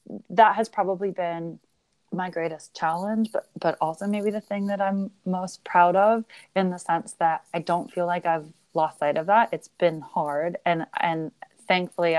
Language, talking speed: English, 180 wpm